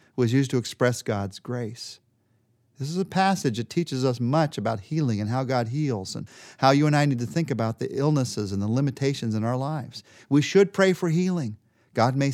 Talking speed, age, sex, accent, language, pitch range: 215 wpm, 40-59, male, American, English, 115-160 Hz